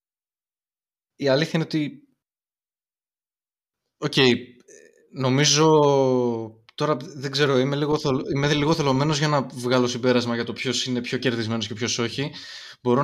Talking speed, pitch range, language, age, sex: 120 wpm, 110-140 Hz, Greek, 20-39, male